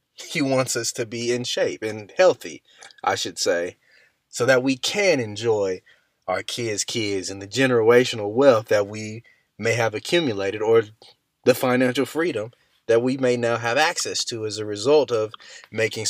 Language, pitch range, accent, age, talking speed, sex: English, 110-155 Hz, American, 30-49, 170 wpm, male